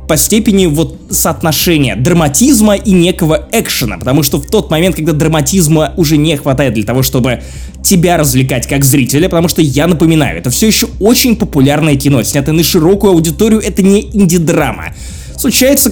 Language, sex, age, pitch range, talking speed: Russian, male, 20-39, 140-200 Hz, 160 wpm